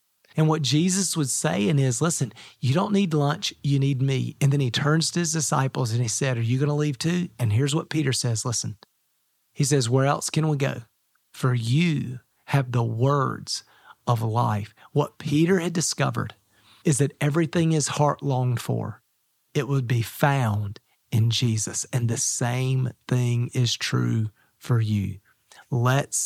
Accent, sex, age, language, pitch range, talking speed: American, male, 40-59, English, 130-170 Hz, 175 wpm